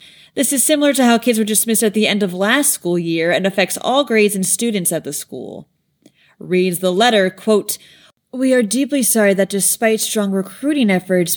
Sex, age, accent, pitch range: female, 30-49, American, 185-265 Hz